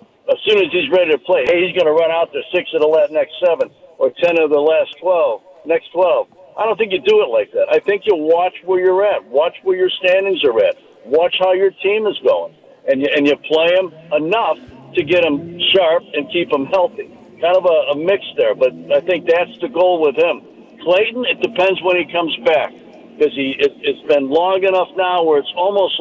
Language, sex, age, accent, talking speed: English, male, 60-79, American, 230 wpm